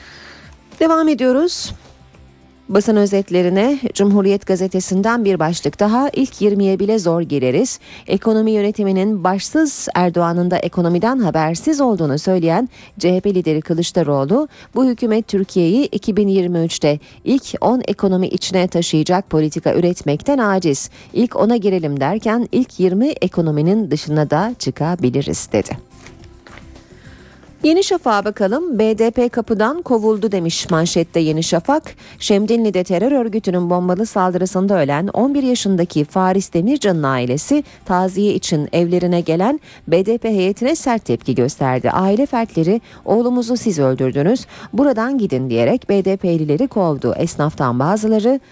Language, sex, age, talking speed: Turkish, female, 40-59, 115 wpm